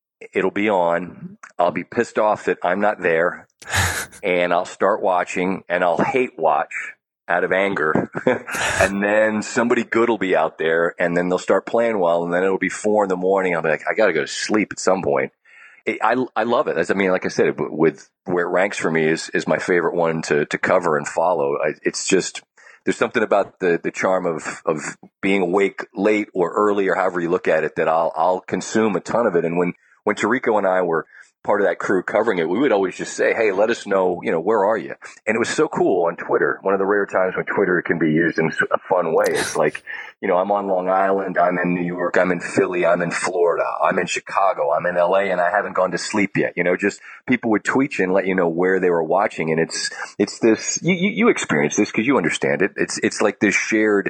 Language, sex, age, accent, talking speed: English, male, 40-59, American, 245 wpm